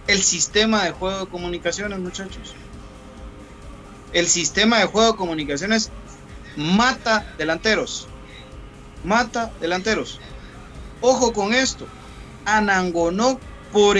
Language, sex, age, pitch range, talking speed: Spanish, male, 40-59, 170-255 Hz, 95 wpm